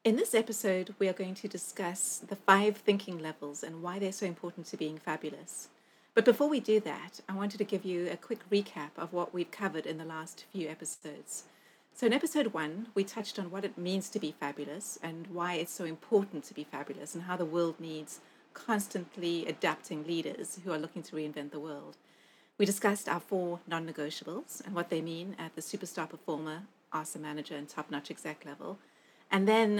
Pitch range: 155-195 Hz